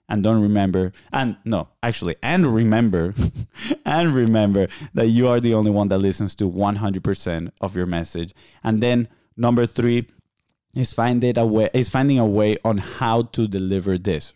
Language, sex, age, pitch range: English, male, 20-39, 100-125 Hz